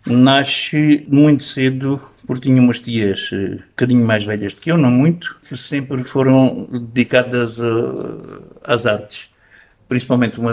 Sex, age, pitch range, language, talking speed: male, 60-79, 120-155 Hz, Portuguese, 135 wpm